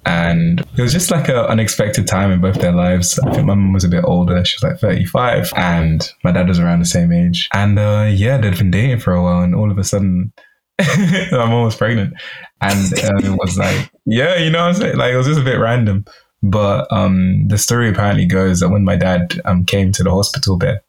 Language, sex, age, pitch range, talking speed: English, male, 20-39, 90-110 Hz, 240 wpm